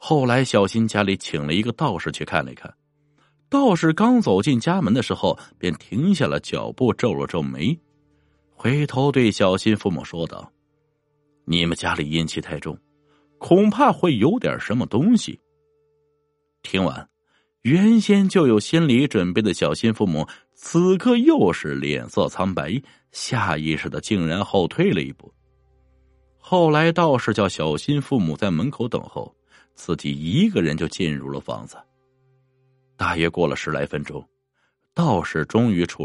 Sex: male